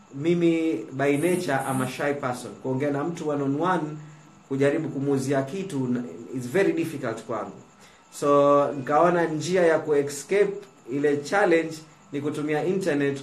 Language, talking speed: Swahili, 135 wpm